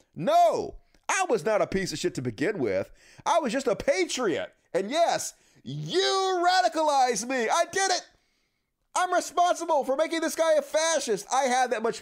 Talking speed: 180 wpm